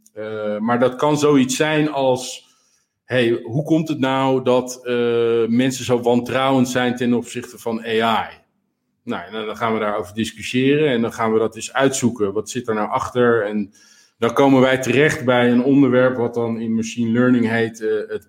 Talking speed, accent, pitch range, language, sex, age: 185 wpm, Dutch, 115-135 Hz, Dutch, male, 50-69